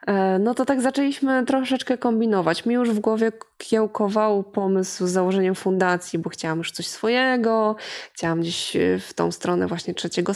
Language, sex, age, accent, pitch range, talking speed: Polish, female, 20-39, native, 175-225 Hz, 155 wpm